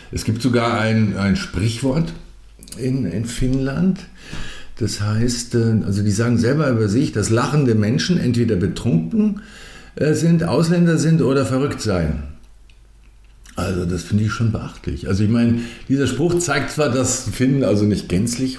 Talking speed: 150 wpm